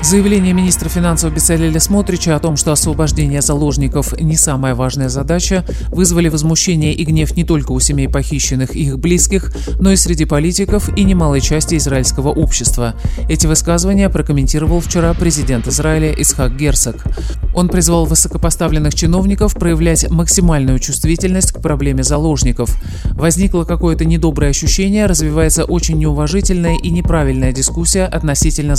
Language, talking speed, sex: Russian, 135 wpm, male